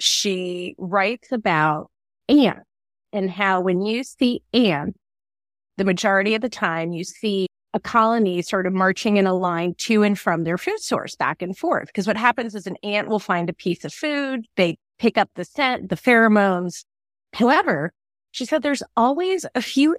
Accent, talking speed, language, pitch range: American, 180 wpm, English, 175-230 Hz